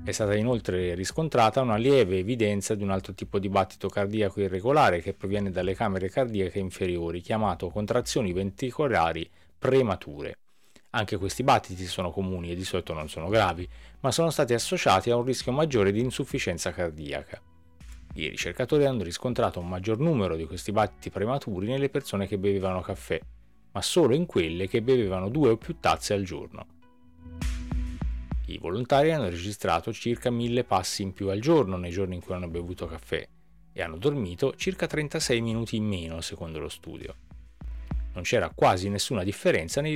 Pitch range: 90-120 Hz